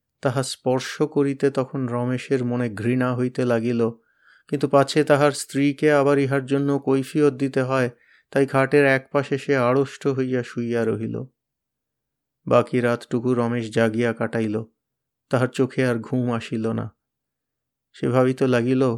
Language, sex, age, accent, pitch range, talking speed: Bengali, male, 30-49, native, 120-140 Hz, 115 wpm